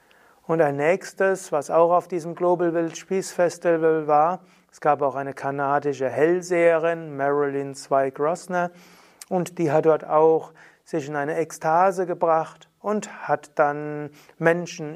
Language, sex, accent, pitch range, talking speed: German, male, German, 145-165 Hz, 130 wpm